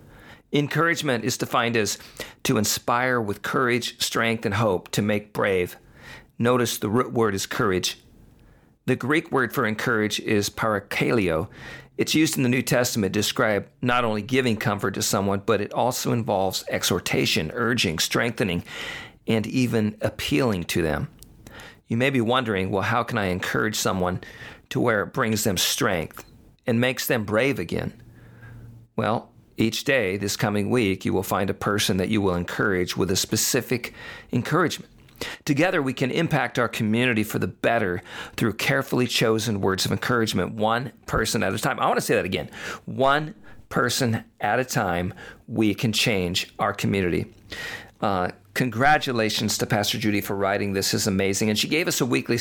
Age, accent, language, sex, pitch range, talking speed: 50-69, American, English, male, 100-125 Hz, 165 wpm